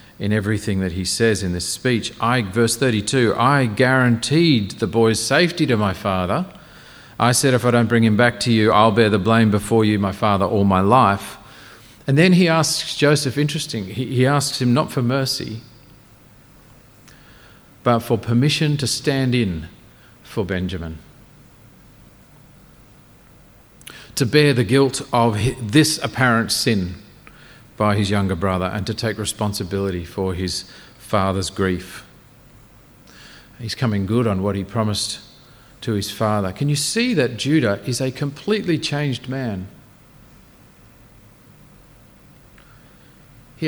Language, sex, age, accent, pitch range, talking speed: English, male, 40-59, Australian, 105-135 Hz, 140 wpm